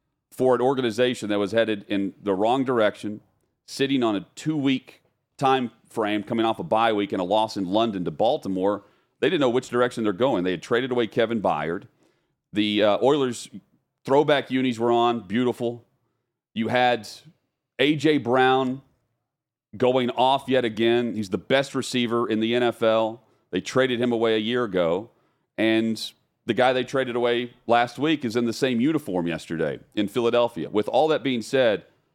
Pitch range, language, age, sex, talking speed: 105-130 Hz, English, 40-59, male, 170 wpm